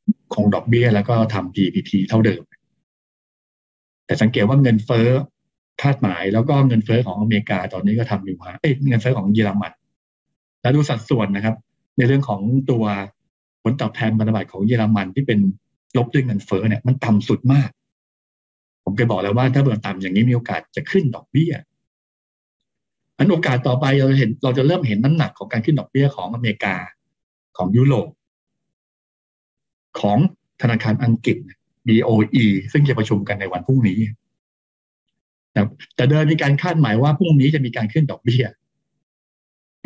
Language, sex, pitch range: Thai, male, 105-135 Hz